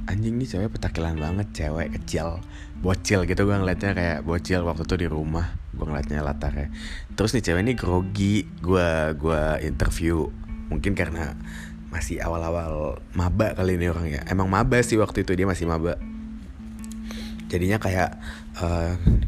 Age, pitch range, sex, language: 20-39, 80-105 Hz, male, Indonesian